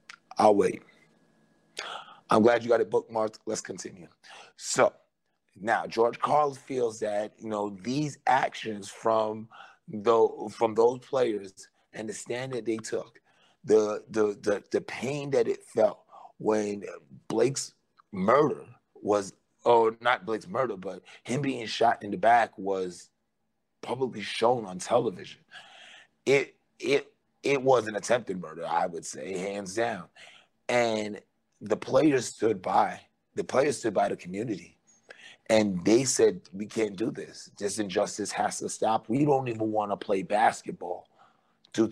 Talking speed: 145 wpm